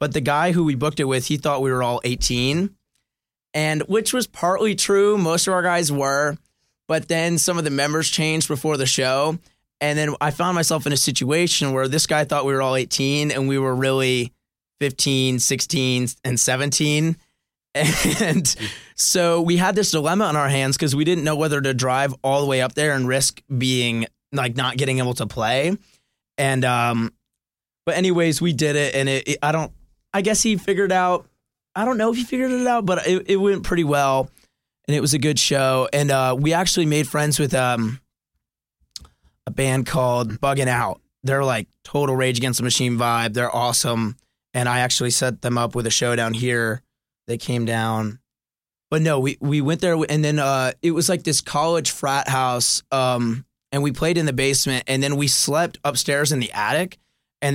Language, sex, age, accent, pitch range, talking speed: English, male, 20-39, American, 130-160 Hz, 200 wpm